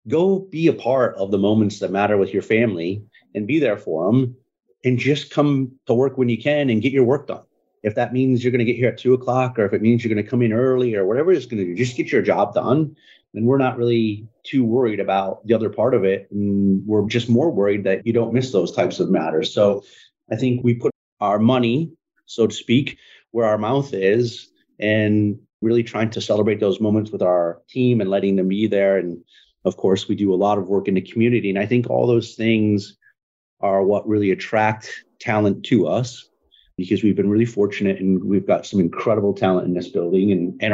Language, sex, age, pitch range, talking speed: English, male, 30-49, 100-125 Hz, 230 wpm